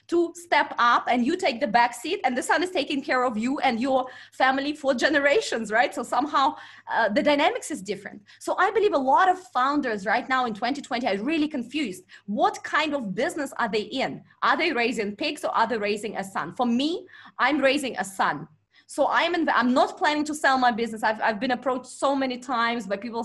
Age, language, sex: 20-39, English, female